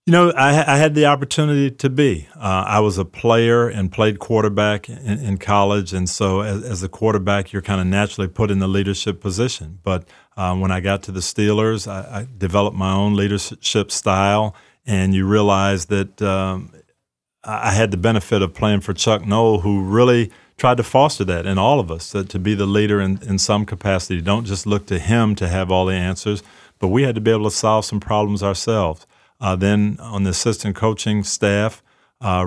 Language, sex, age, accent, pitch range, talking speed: English, male, 40-59, American, 95-110 Hz, 205 wpm